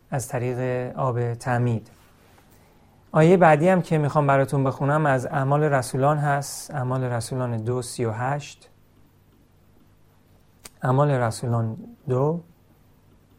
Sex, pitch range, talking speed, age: male, 120-160 Hz, 110 wpm, 40-59